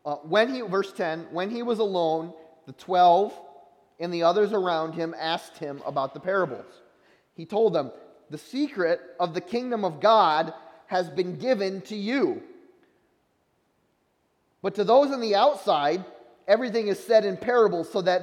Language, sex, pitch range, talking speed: English, male, 185-235 Hz, 160 wpm